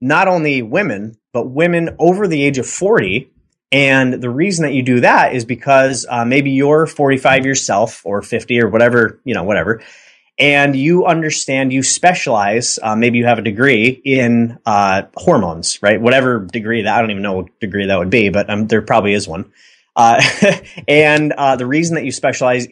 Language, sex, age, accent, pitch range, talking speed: English, male, 30-49, American, 110-140 Hz, 190 wpm